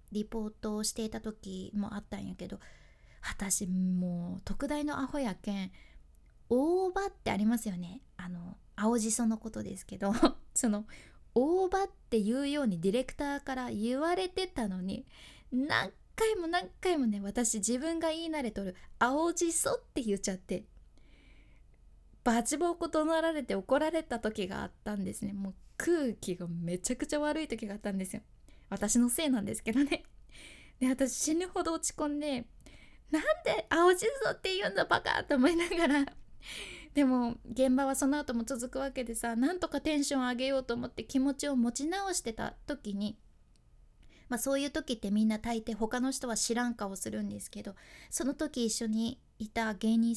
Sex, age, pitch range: female, 20-39, 215-290 Hz